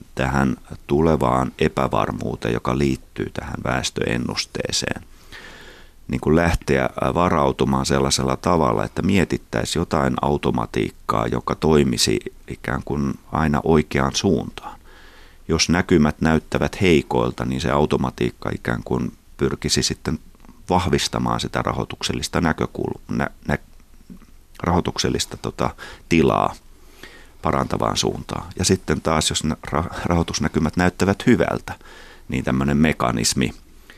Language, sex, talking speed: Finnish, male, 95 wpm